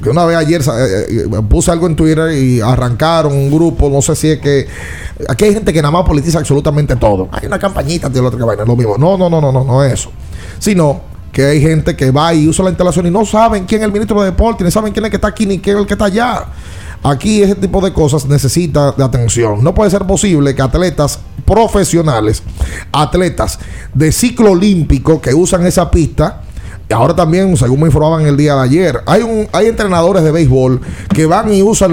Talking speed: 225 wpm